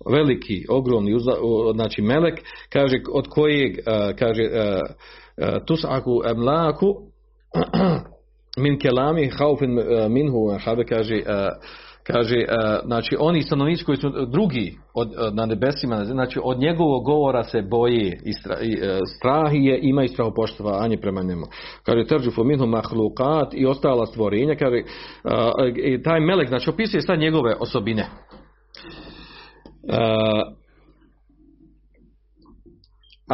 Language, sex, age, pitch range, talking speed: Croatian, male, 50-69, 110-150 Hz, 95 wpm